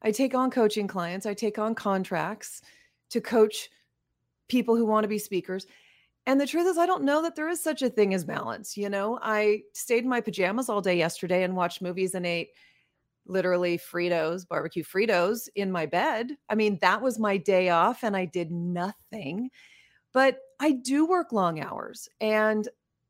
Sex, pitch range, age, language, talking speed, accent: female, 180-240 Hz, 30-49, English, 185 wpm, American